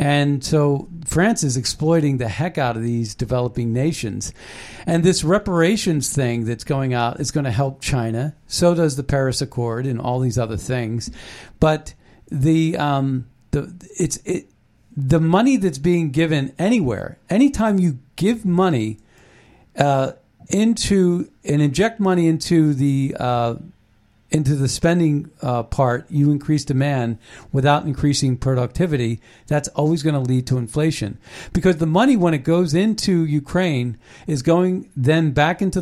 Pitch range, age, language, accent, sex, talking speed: 125-170 Hz, 50-69, English, American, male, 150 wpm